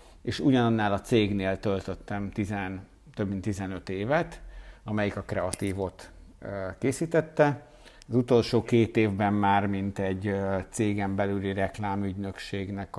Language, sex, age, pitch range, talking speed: Hungarian, male, 50-69, 95-115 Hz, 110 wpm